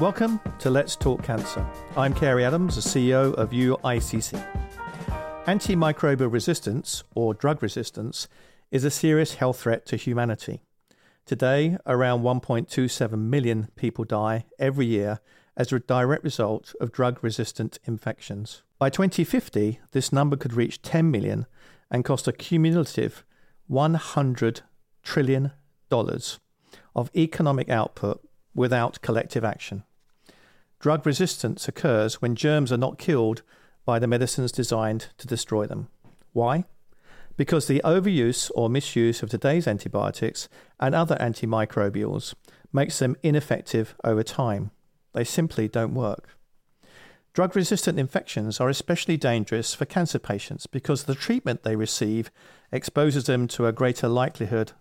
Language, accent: English, British